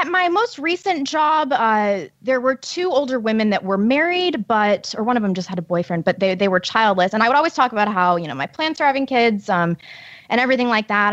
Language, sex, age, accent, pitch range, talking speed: English, female, 20-39, American, 190-260 Hz, 255 wpm